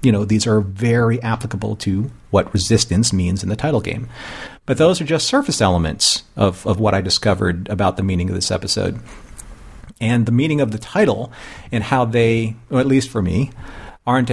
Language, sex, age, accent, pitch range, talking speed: English, male, 40-59, American, 105-130 Hz, 190 wpm